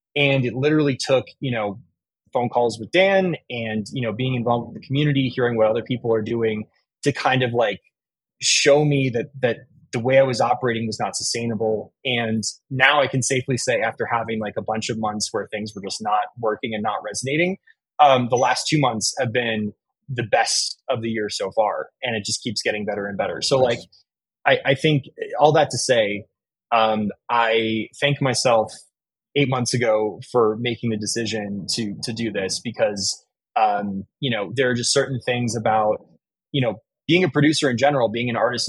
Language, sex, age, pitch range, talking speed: English, male, 20-39, 110-130 Hz, 200 wpm